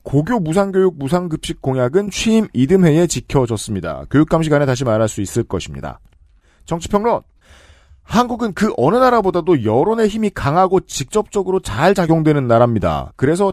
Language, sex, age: Korean, male, 40-59